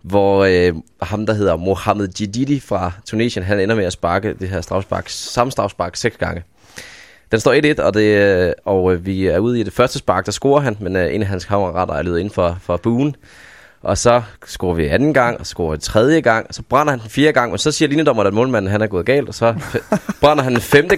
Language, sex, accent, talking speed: Danish, male, native, 240 wpm